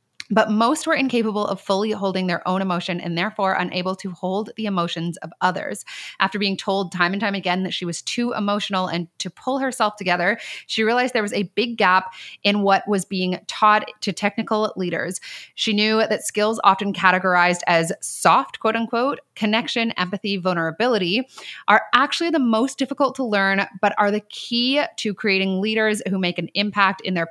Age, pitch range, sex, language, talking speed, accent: 30-49, 185-225 Hz, female, English, 185 wpm, American